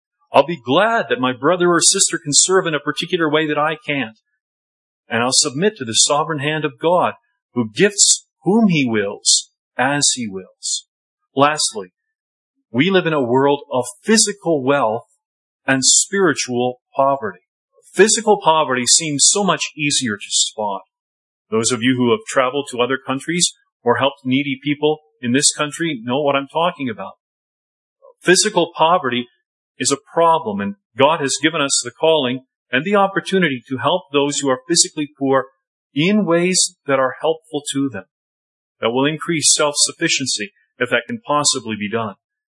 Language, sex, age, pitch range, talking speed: English, male, 30-49, 135-200 Hz, 160 wpm